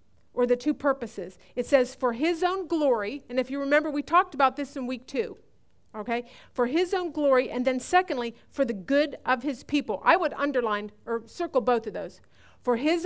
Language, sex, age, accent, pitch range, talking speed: English, female, 50-69, American, 220-285 Hz, 205 wpm